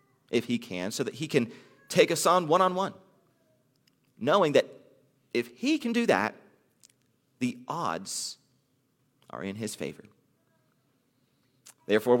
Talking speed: 135 wpm